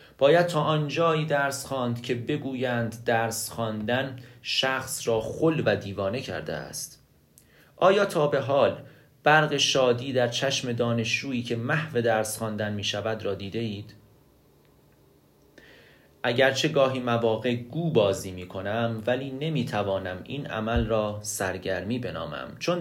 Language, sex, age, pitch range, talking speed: Persian, male, 30-49, 110-140 Hz, 130 wpm